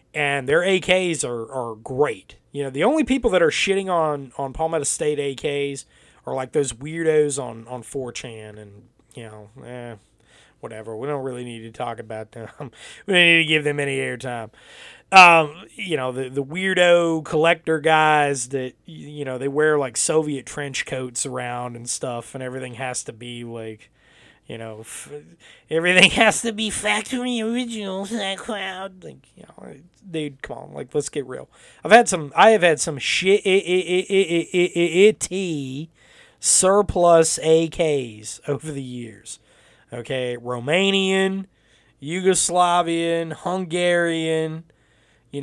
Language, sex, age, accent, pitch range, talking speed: English, male, 30-49, American, 125-170 Hz, 155 wpm